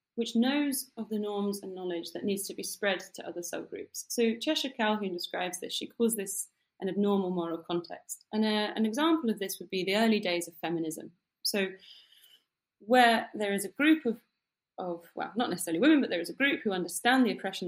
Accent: British